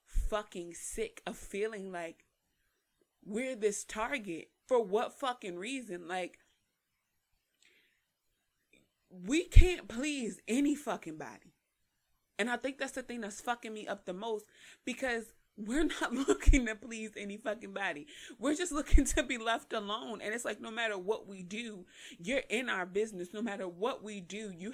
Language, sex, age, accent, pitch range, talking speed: English, female, 30-49, American, 190-240 Hz, 160 wpm